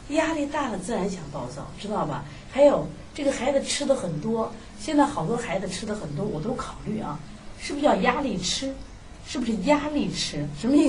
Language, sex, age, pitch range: Chinese, female, 30-49, 160-235 Hz